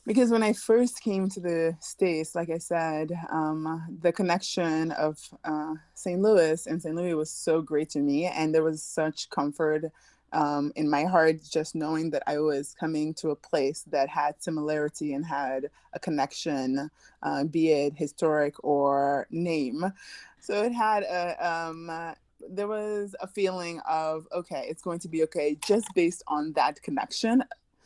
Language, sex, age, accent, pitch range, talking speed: English, female, 20-39, American, 150-175 Hz, 170 wpm